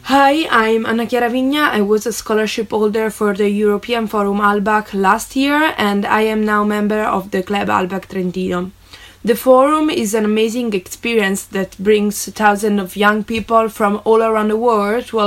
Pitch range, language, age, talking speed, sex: 205-240 Hz, Italian, 20-39, 185 wpm, female